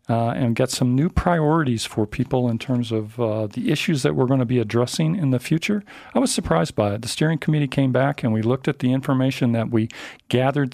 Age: 40-59